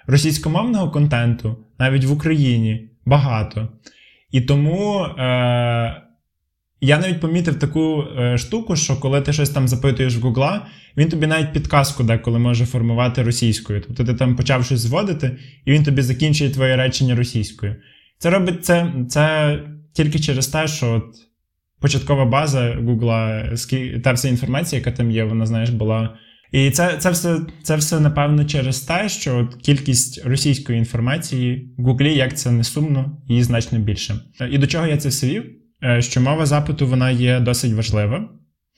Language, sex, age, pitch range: Ukrainian, male, 10-29, 120-150 Hz